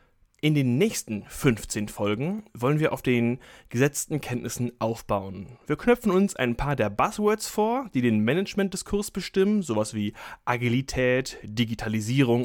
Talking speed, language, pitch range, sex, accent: 140 wpm, German, 120-160 Hz, male, German